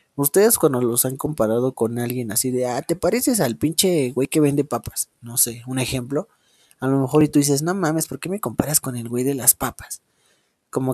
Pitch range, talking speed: 120-140 Hz, 225 wpm